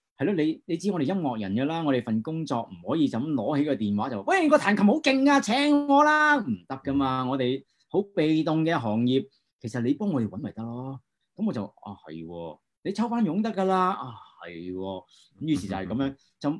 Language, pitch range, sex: Chinese, 105-170 Hz, male